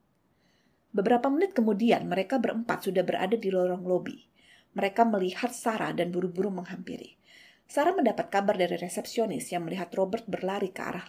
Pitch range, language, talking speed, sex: 175-230 Hz, Indonesian, 145 wpm, female